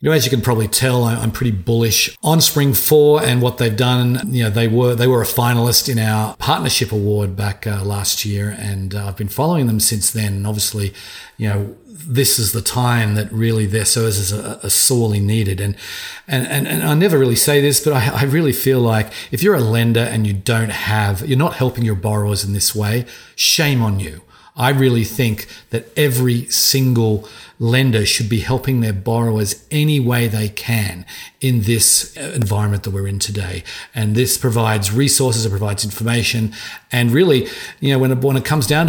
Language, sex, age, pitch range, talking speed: English, male, 40-59, 105-125 Hz, 200 wpm